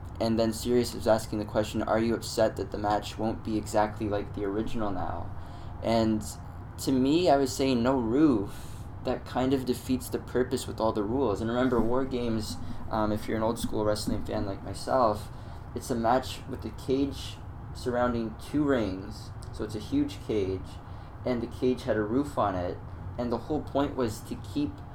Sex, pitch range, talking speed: male, 105-120 Hz, 190 wpm